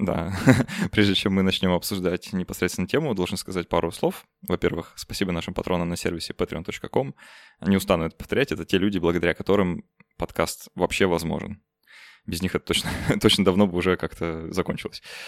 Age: 20-39